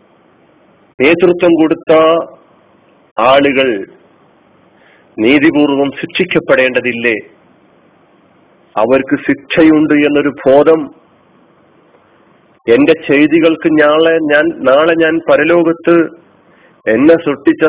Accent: native